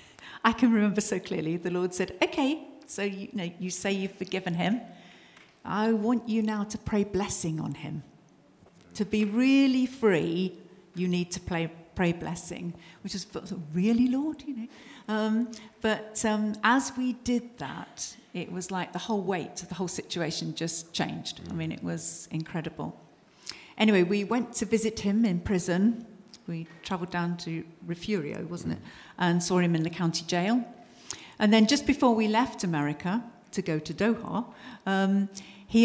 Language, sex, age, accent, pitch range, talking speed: English, female, 50-69, British, 170-220 Hz, 170 wpm